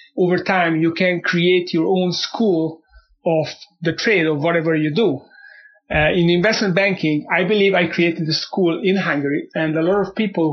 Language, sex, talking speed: English, male, 180 wpm